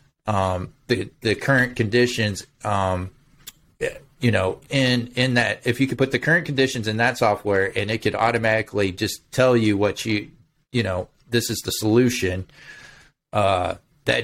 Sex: male